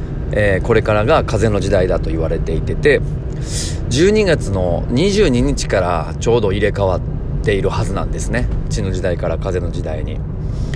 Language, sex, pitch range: Japanese, male, 95-135 Hz